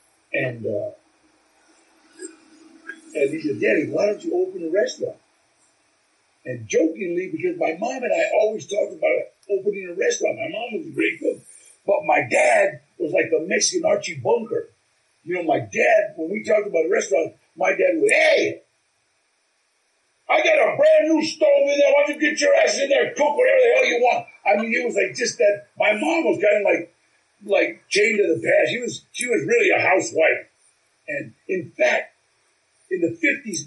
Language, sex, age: English, male, 50-69